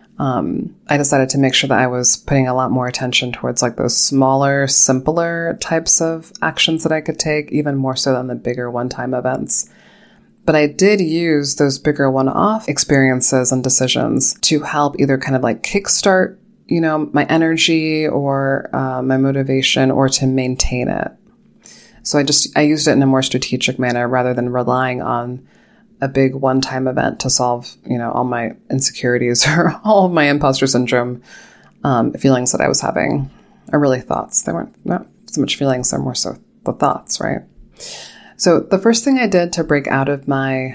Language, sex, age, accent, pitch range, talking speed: English, female, 20-39, American, 130-155 Hz, 190 wpm